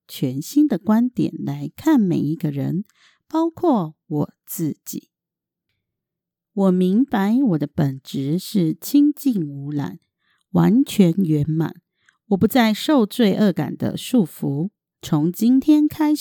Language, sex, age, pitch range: Chinese, female, 50-69, 155-235 Hz